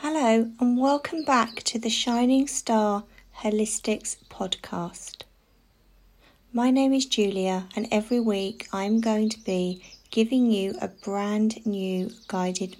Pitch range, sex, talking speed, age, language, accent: 205-245 Hz, female, 125 wpm, 40-59, English, British